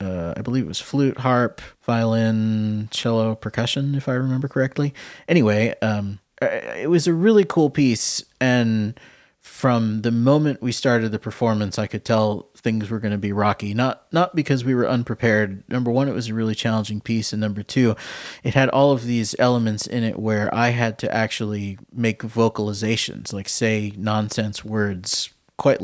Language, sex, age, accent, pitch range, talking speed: English, male, 30-49, American, 105-125 Hz, 175 wpm